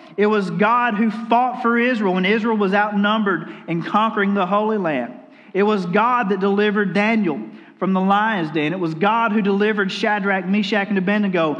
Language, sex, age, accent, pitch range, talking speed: English, male, 40-59, American, 180-220 Hz, 180 wpm